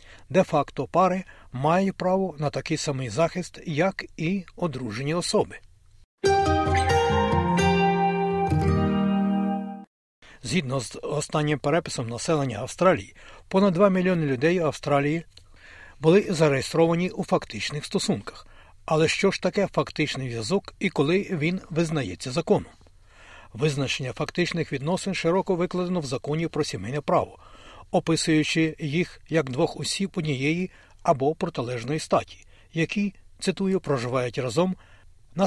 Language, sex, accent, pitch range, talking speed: Ukrainian, male, native, 135-185 Hz, 110 wpm